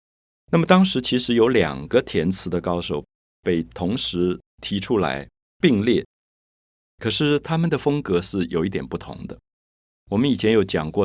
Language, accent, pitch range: Chinese, native, 85-125 Hz